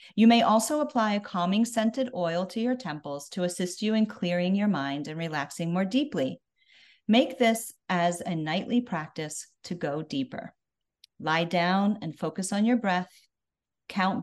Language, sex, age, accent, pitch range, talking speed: English, female, 40-59, American, 170-230 Hz, 165 wpm